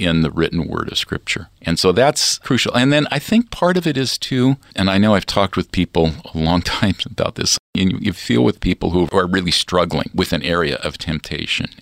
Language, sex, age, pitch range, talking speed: English, male, 50-69, 80-105 Hz, 235 wpm